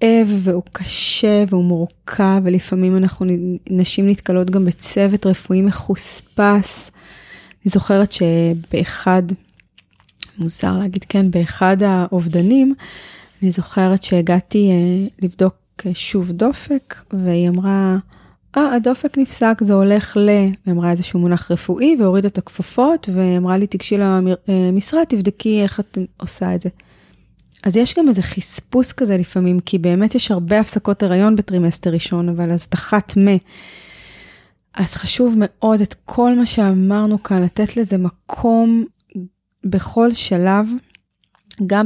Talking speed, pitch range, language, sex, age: 120 wpm, 180-210 Hz, Hebrew, female, 20-39